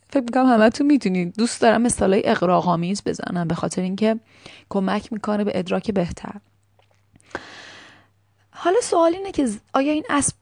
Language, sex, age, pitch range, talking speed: Persian, female, 30-49, 185-260 Hz, 140 wpm